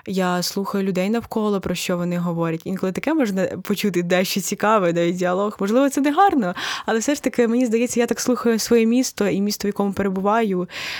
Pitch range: 180-215 Hz